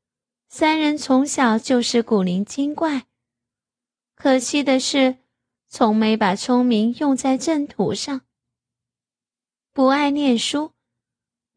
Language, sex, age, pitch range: Chinese, female, 20-39, 195-260 Hz